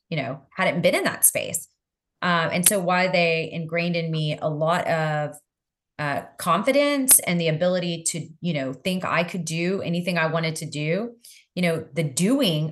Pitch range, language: 155-195 Hz, English